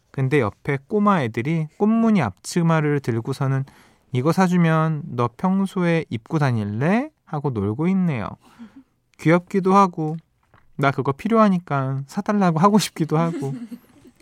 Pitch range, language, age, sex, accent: 130-195 Hz, Korean, 20-39, male, native